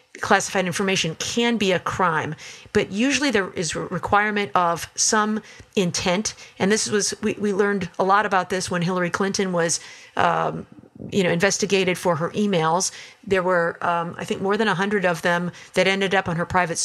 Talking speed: 190 wpm